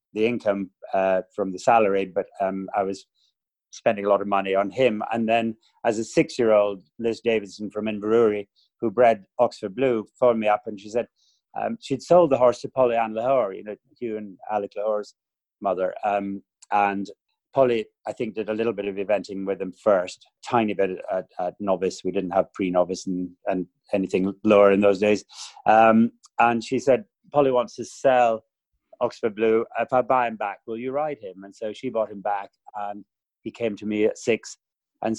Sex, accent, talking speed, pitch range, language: male, British, 195 wpm, 100-115 Hz, English